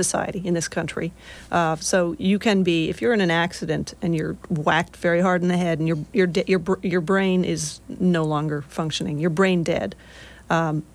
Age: 40-59